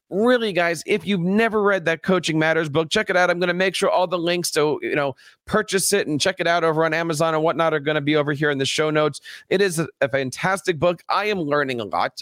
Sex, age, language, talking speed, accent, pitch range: male, 40-59, English, 270 wpm, American, 140-175 Hz